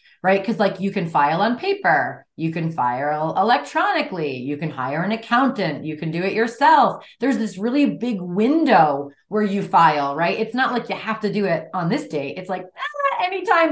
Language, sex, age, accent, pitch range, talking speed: English, female, 30-49, American, 175-245 Hz, 200 wpm